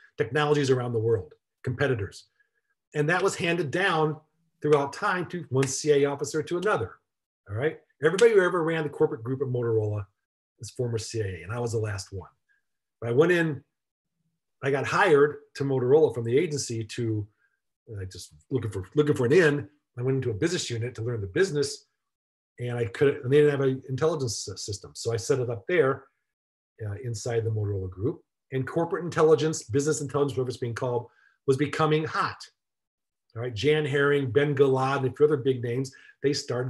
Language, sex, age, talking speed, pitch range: English, male, 40-59, 190 wpm, 115-155 Hz